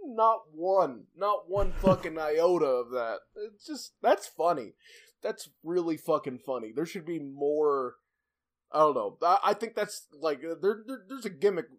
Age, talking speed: 20-39, 170 wpm